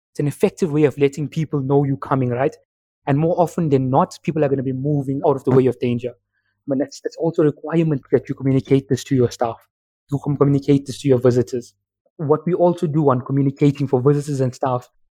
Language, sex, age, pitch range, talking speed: English, male, 20-39, 130-155 Hz, 240 wpm